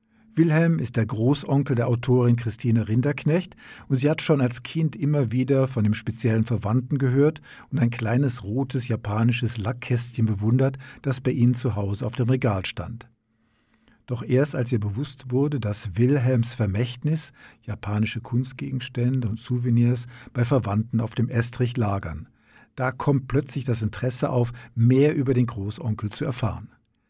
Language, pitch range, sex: German, 115-130 Hz, male